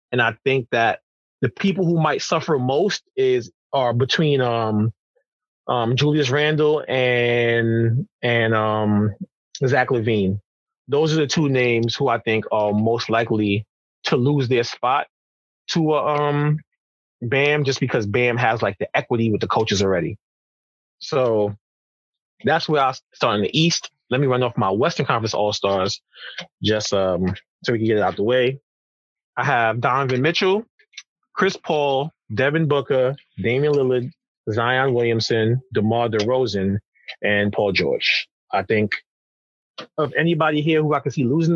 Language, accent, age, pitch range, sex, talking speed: English, American, 20-39, 105-140 Hz, male, 155 wpm